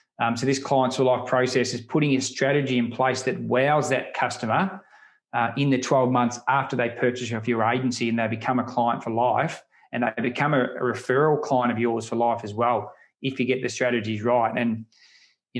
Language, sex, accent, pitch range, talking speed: English, male, Australian, 120-140 Hz, 210 wpm